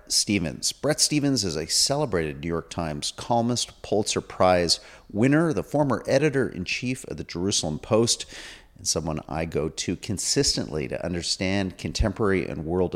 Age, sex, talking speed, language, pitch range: 40-59, male, 145 wpm, English, 80-105 Hz